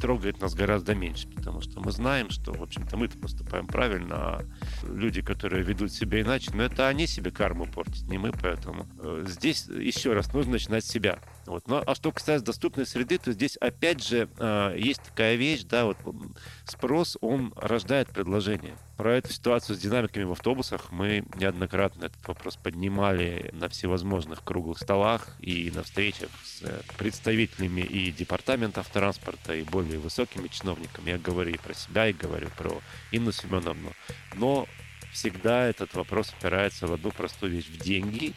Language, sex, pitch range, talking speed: Russian, male, 90-115 Hz, 165 wpm